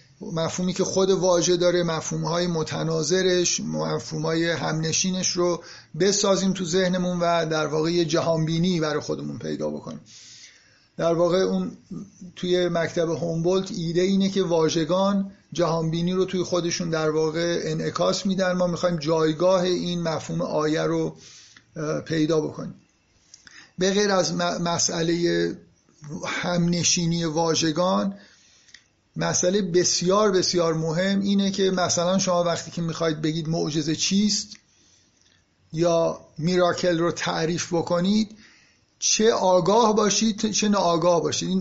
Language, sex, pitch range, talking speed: Persian, male, 165-190 Hz, 115 wpm